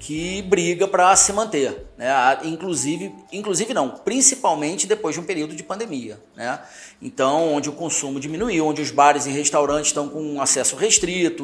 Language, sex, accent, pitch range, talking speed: Portuguese, male, Brazilian, 150-210 Hz, 170 wpm